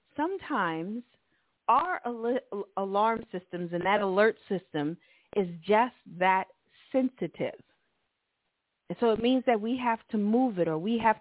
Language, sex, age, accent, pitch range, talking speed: English, female, 40-59, American, 180-250 Hz, 135 wpm